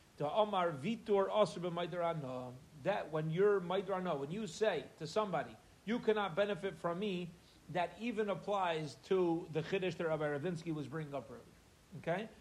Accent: American